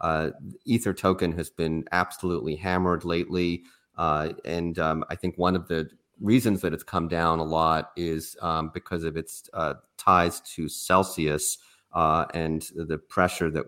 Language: English